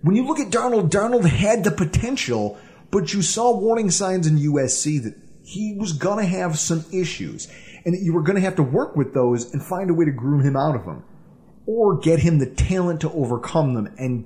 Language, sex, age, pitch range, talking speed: English, male, 30-49, 140-195 Hz, 225 wpm